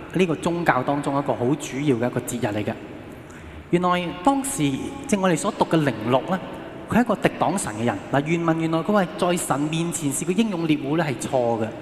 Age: 20-39